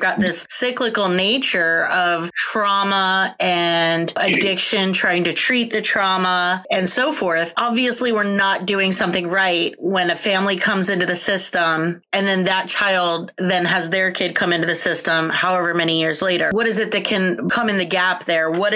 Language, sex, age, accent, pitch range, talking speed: English, female, 30-49, American, 180-210 Hz, 180 wpm